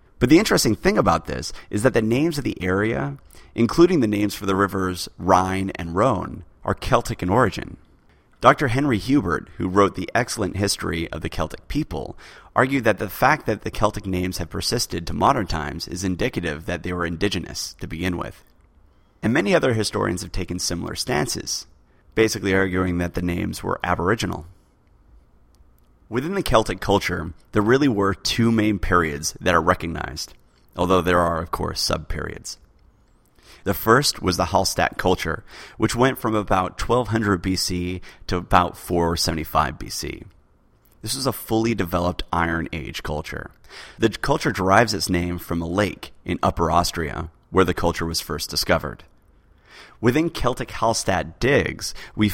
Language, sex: English, male